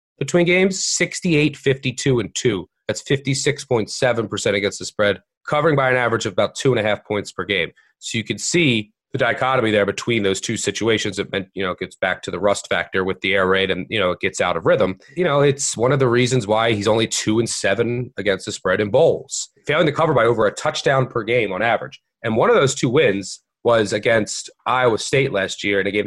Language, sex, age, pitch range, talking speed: English, male, 30-49, 105-145 Hz, 235 wpm